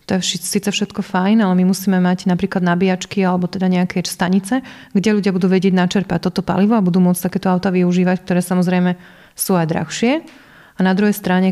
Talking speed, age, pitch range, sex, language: 195 wpm, 30-49, 180-200 Hz, female, Slovak